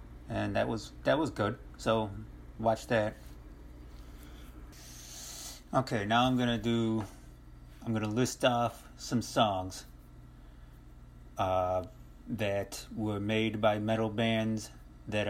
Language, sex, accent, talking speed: English, male, American, 120 wpm